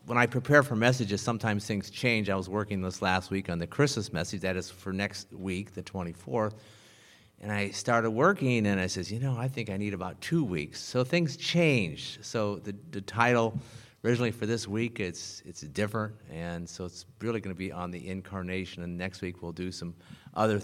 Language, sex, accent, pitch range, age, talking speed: English, male, American, 95-120 Hz, 40-59, 210 wpm